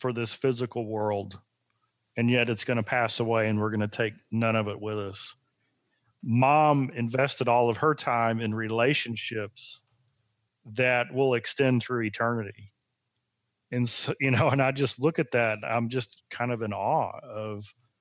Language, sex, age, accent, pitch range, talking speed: English, male, 40-59, American, 110-135 Hz, 165 wpm